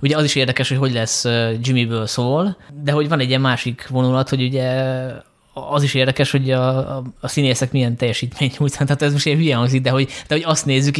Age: 20-39